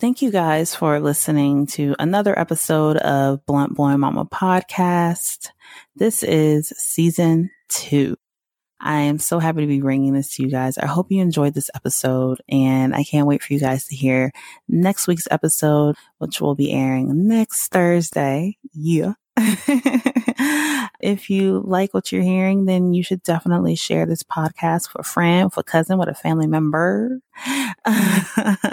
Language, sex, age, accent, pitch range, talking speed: English, female, 20-39, American, 145-215 Hz, 160 wpm